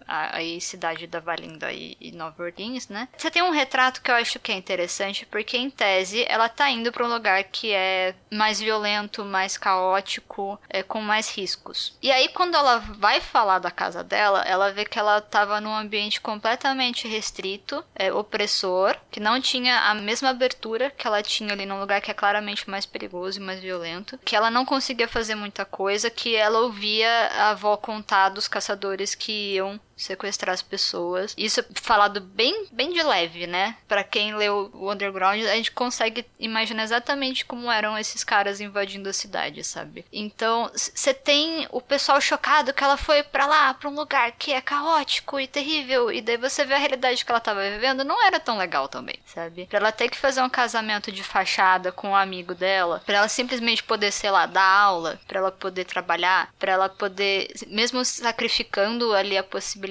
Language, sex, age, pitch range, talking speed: Portuguese, female, 10-29, 195-245 Hz, 195 wpm